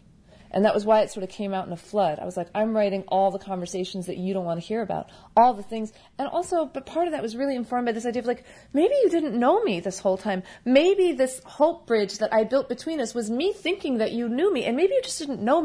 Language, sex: English, female